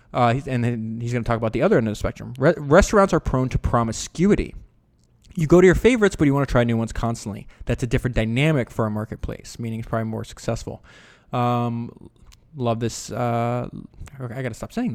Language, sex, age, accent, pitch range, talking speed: English, male, 20-39, American, 115-145 Hz, 210 wpm